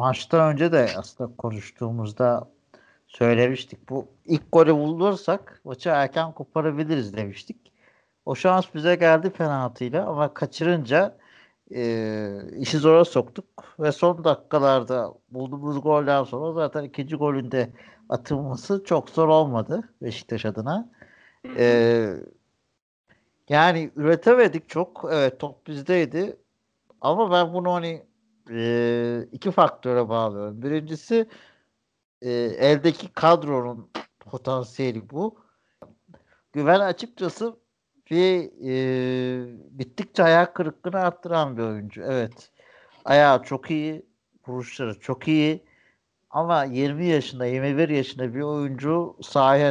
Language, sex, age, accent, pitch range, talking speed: Turkish, male, 60-79, native, 125-165 Hz, 100 wpm